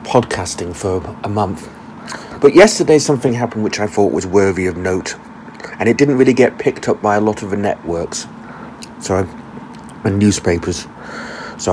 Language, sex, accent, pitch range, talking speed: English, male, British, 90-115 Hz, 165 wpm